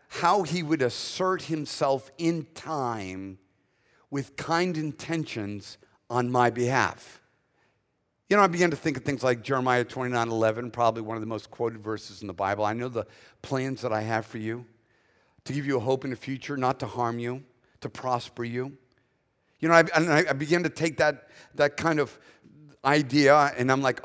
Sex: male